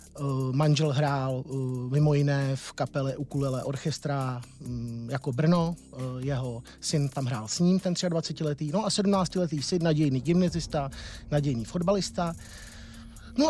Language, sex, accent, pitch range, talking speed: Czech, male, native, 145-175 Hz, 120 wpm